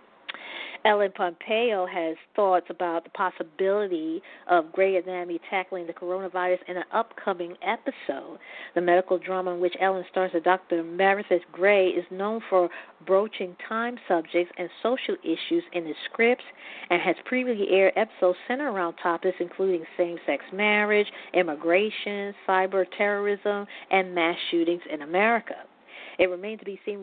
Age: 40-59